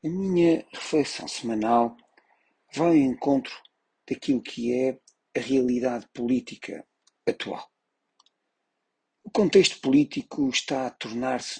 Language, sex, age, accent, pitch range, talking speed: Portuguese, male, 40-59, Portuguese, 120-175 Hz, 105 wpm